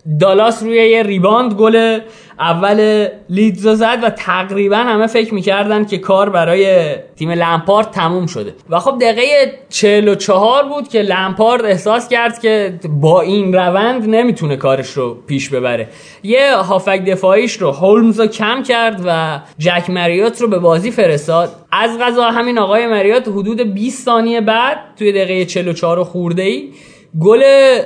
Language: Persian